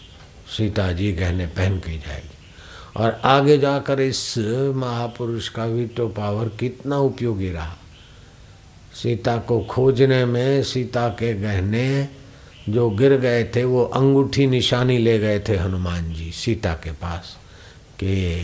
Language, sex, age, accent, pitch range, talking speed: Hindi, male, 60-79, native, 95-120 Hz, 135 wpm